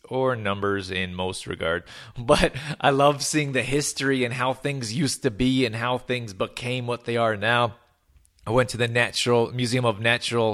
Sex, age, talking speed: male, 30-49, 190 wpm